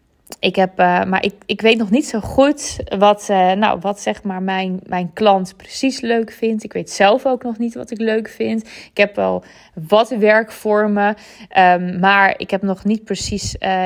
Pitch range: 185-235 Hz